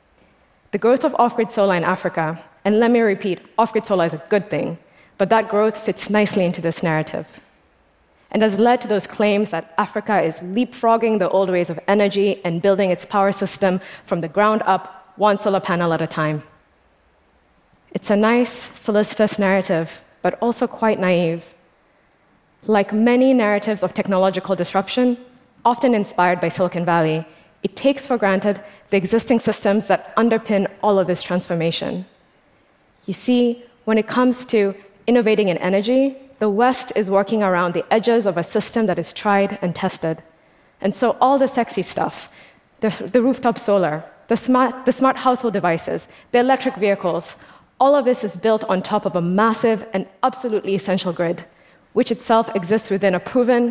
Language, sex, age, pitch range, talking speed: English, female, 20-39, 180-230 Hz, 170 wpm